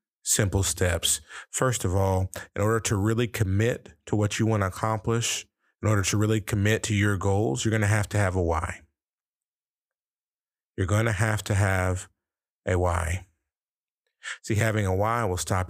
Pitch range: 90-105 Hz